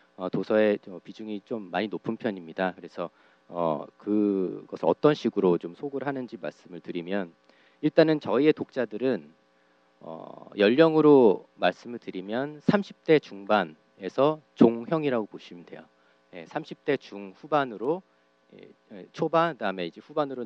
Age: 40-59